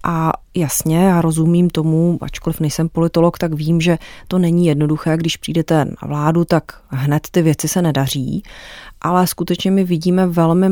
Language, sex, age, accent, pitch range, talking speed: Czech, female, 30-49, native, 155-180 Hz, 160 wpm